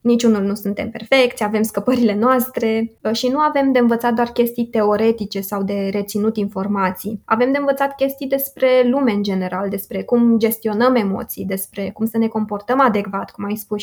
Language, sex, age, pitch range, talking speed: Romanian, female, 20-39, 215-260 Hz, 175 wpm